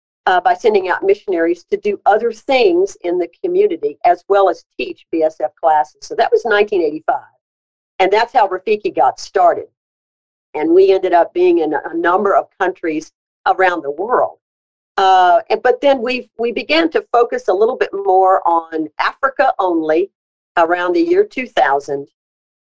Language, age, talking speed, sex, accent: English, 50-69, 155 wpm, female, American